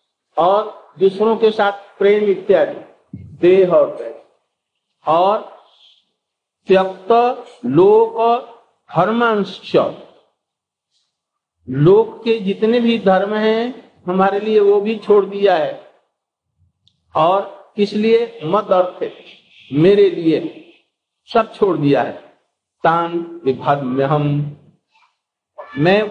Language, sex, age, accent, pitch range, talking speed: Hindi, male, 50-69, native, 185-235 Hz, 95 wpm